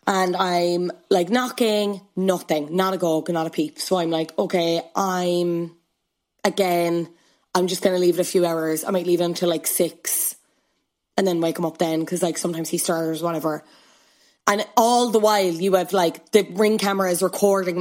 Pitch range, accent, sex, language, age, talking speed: 165-200 Hz, Irish, female, English, 20-39, 190 wpm